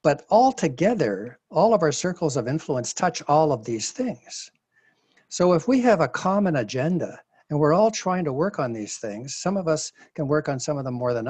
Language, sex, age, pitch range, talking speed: English, male, 60-79, 130-165 Hz, 210 wpm